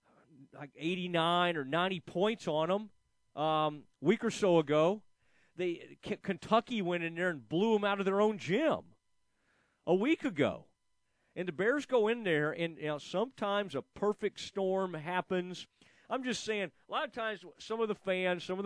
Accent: American